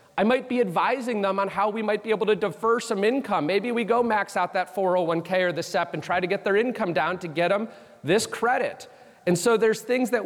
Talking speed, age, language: 245 wpm, 30-49, English